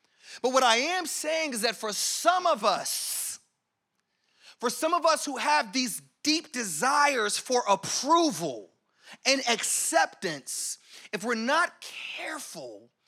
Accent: American